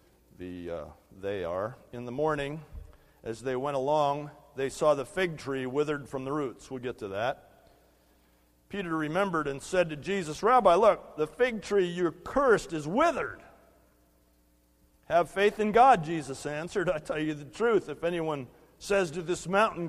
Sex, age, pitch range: male, 50-69, 125-185 Hz